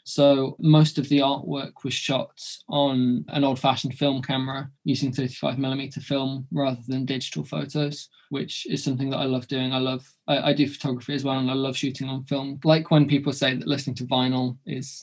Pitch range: 130-140 Hz